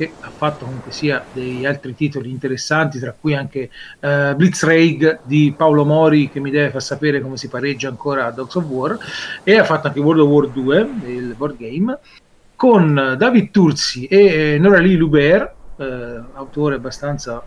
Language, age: Italian, 40-59